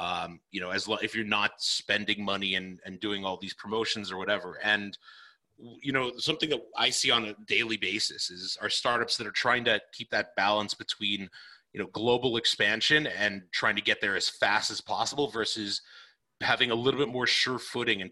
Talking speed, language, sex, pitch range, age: 205 wpm, English, male, 105-130 Hz, 30-49